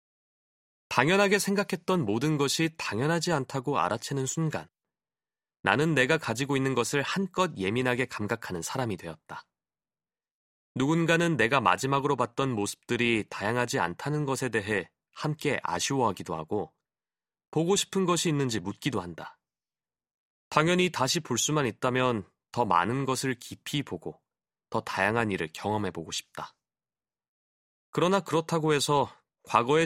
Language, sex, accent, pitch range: Korean, male, native, 115-155 Hz